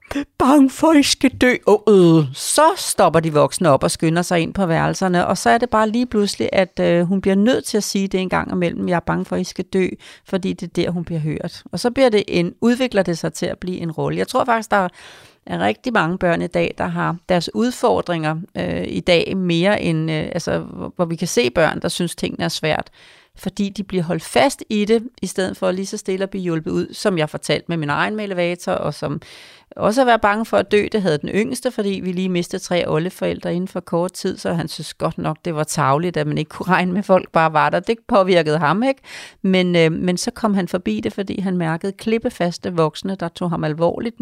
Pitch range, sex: 165-205 Hz, female